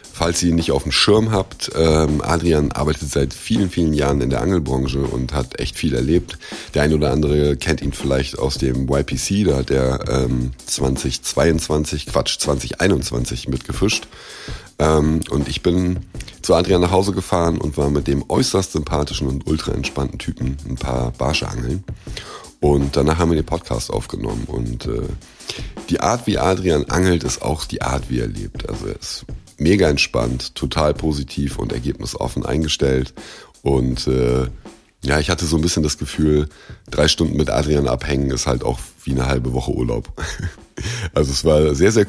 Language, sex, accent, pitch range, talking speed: German, male, German, 65-80 Hz, 170 wpm